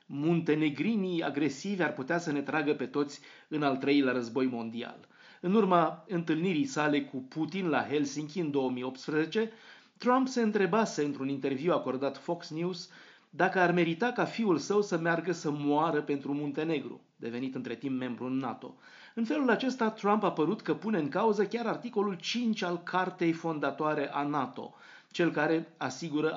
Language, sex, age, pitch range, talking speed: Romanian, male, 30-49, 135-185 Hz, 160 wpm